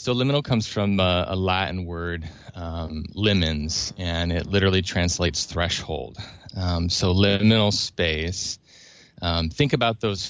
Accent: American